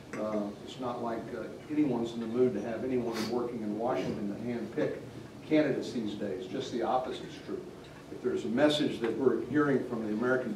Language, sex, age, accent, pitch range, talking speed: English, male, 50-69, American, 110-130 Hz, 200 wpm